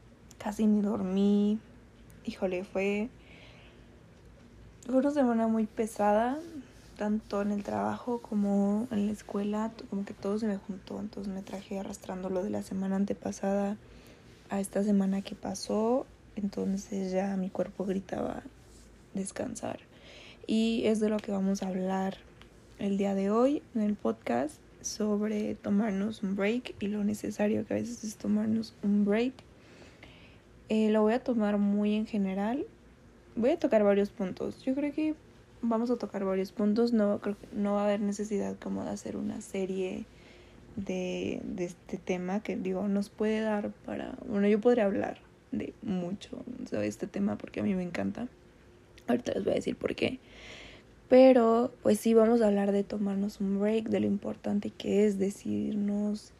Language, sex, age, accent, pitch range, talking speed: Spanish, female, 20-39, Mexican, 195-220 Hz, 165 wpm